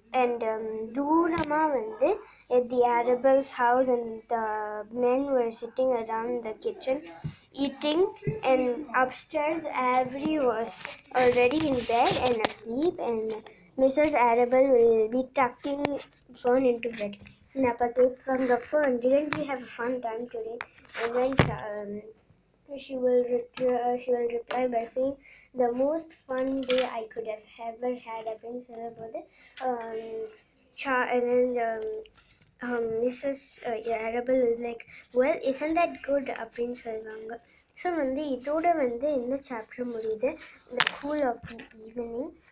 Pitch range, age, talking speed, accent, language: 230-270 Hz, 20-39, 135 wpm, native, Tamil